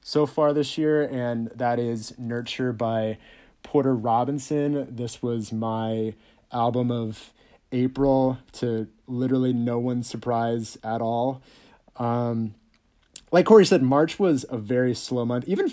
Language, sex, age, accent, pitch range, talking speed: English, male, 30-49, American, 115-135 Hz, 135 wpm